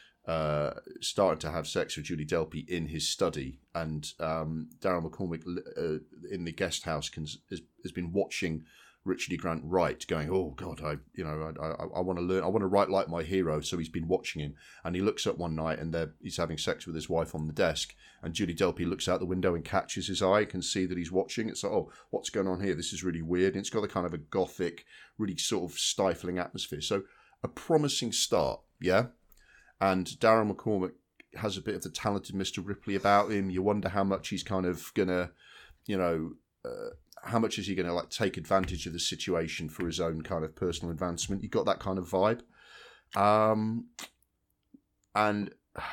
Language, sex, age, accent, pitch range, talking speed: English, male, 30-49, British, 80-100 Hz, 215 wpm